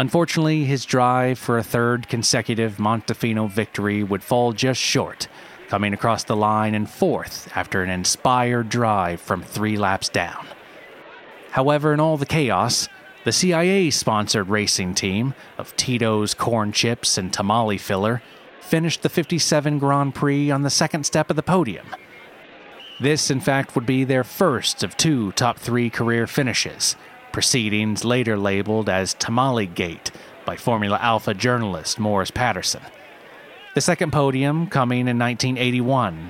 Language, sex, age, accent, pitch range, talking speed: English, male, 30-49, American, 105-140 Hz, 140 wpm